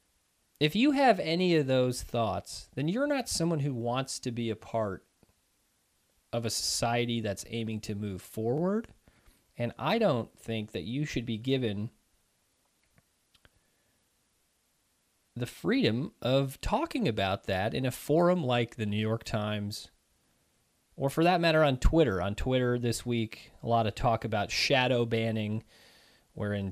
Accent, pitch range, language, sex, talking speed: American, 105-135 Hz, English, male, 150 wpm